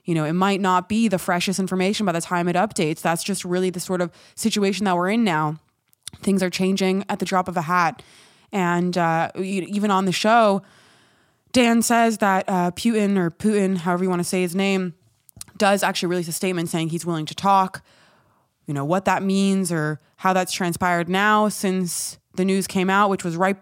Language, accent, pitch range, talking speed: English, American, 175-195 Hz, 210 wpm